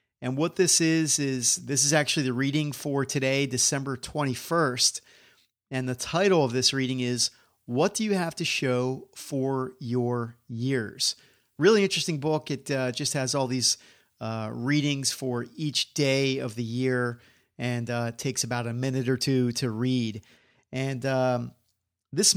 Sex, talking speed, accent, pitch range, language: male, 160 wpm, American, 125-155 Hz, English